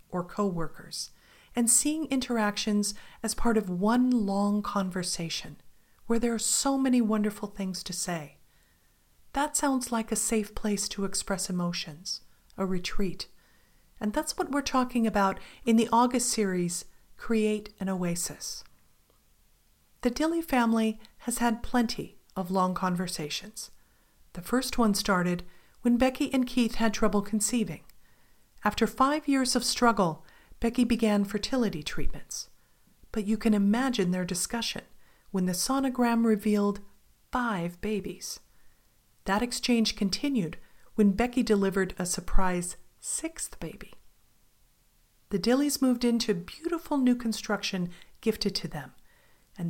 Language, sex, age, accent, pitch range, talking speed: English, female, 40-59, American, 190-240 Hz, 130 wpm